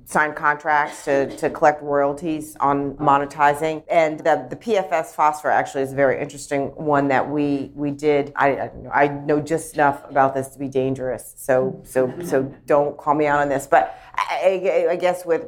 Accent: American